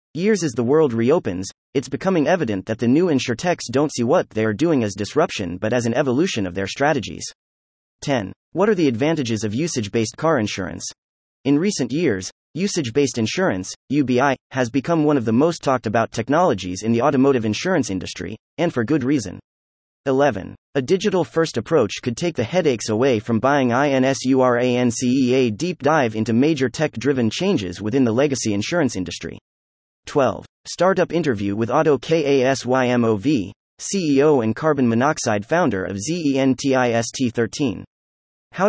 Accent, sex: American, male